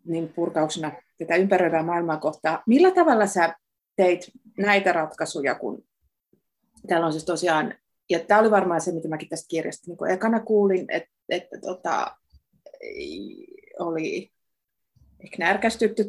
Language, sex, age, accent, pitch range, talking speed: Finnish, female, 30-49, native, 165-220 Hz, 130 wpm